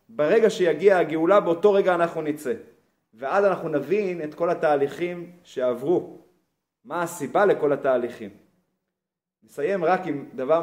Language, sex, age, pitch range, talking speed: Hebrew, male, 30-49, 140-175 Hz, 125 wpm